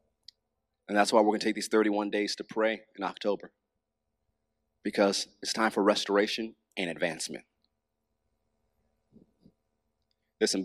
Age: 30-49